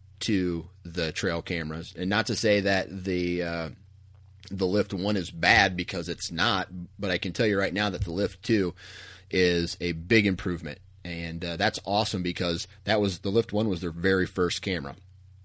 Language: English